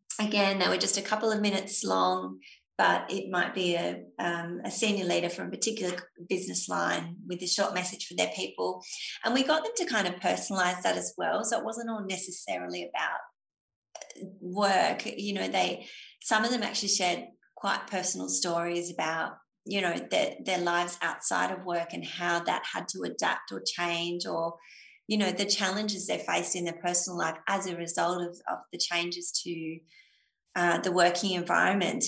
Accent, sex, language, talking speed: Australian, female, English, 185 wpm